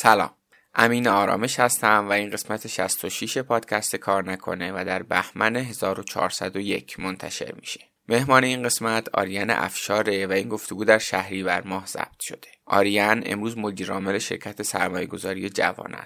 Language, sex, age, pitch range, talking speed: Persian, male, 20-39, 100-115 Hz, 140 wpm